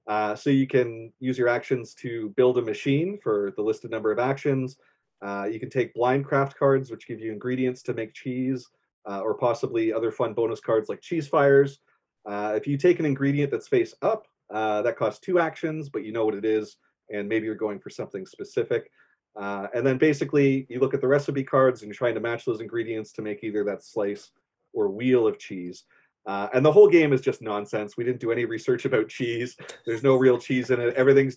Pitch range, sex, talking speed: 110-145 Hz, male, 220 wpm